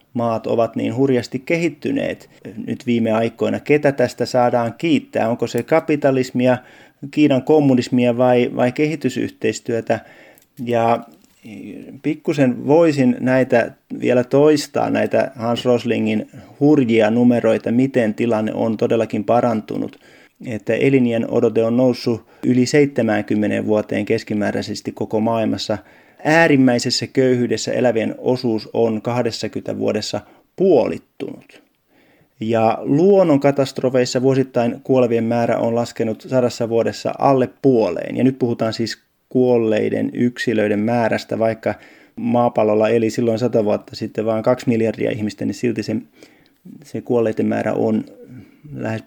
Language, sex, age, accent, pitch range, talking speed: Finnish, male, 30-49, native, 115-130 Hz, 110 wpm